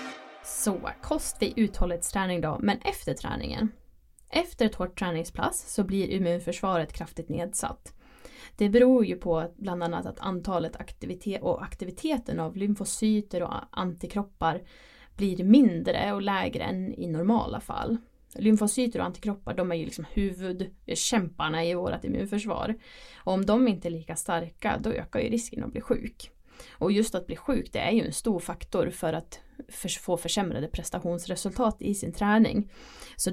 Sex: female